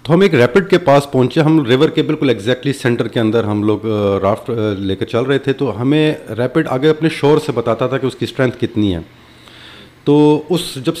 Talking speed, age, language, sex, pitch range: 225 wpm, 30-49, Urdu, male, 115-150 Hz